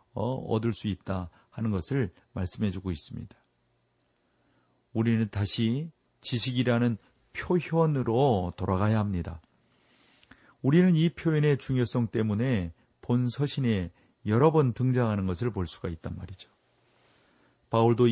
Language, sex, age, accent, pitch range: Korean, male, 40-59, native, 100-130 Hz